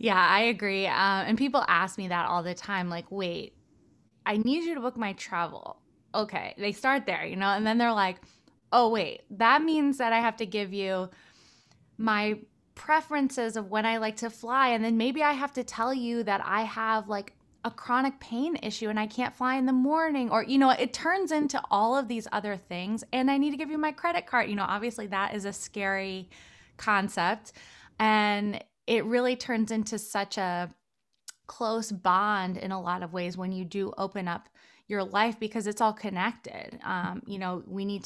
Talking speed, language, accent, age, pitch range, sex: 205 wpm, English, American, 20-39, 190-235 Hz, female